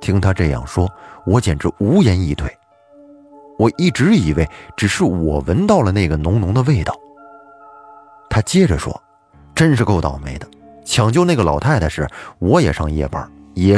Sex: male